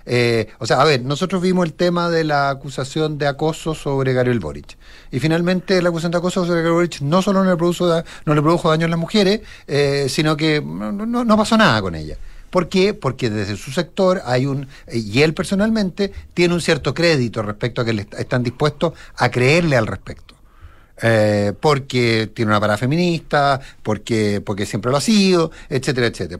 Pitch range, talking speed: 120-175 Hz, 200 wpm